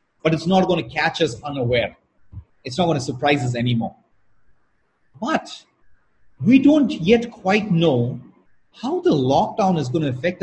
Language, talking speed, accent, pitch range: English, 145 wpm, Indian, 135-210 Hz